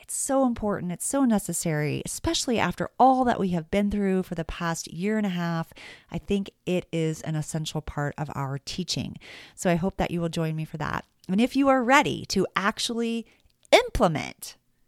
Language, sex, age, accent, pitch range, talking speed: English, female, 40-59, American, 175-245 Hz, 200 wpm